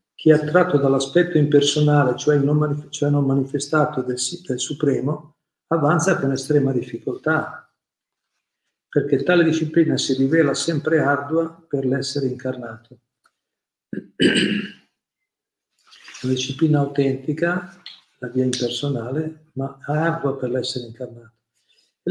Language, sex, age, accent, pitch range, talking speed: Italian, male, 50-69, native, 125-145 Hz, 95 wpm